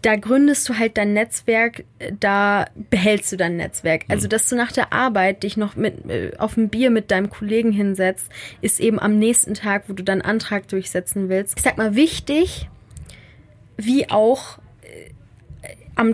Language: German